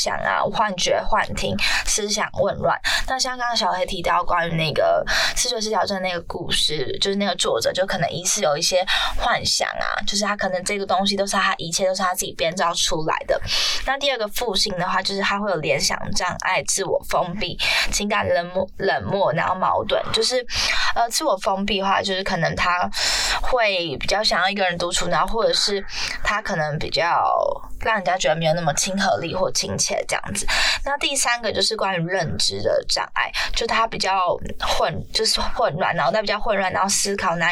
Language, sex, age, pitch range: Chinese, female, 20-39, 180-225 Hz